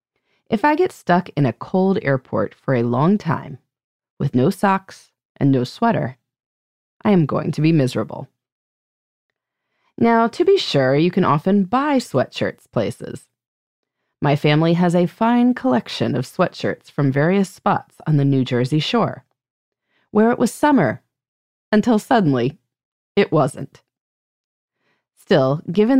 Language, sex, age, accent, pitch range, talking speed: English, female, 30-49, American, 135-215 Hz, 140 wpm